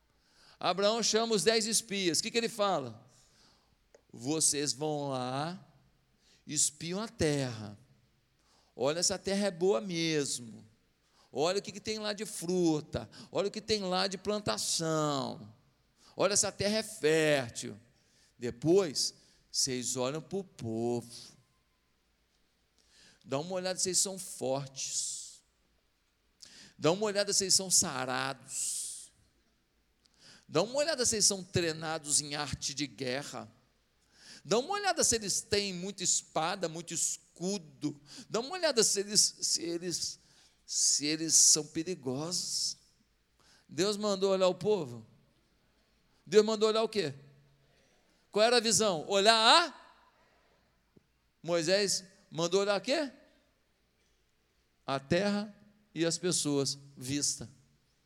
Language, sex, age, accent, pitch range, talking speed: Portuguese, male, 50-69, Brazilian, 135-200 Hz, 120 wpm